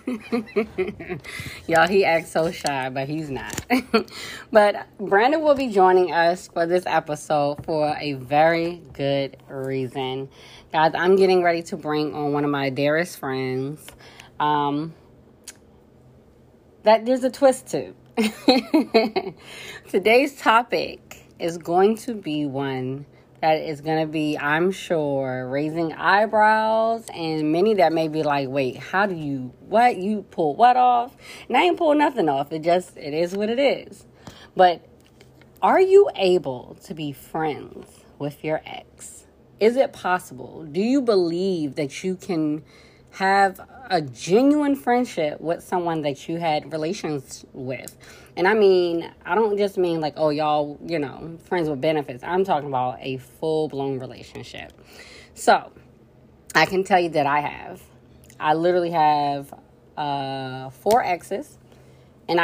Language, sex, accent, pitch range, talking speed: English, female, American, 145-190 Hz, 145 wpm